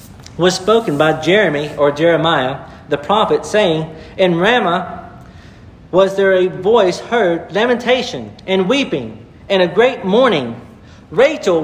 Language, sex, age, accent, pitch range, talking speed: English, male, 50-69, American, 160-210 Hz, 125 wpm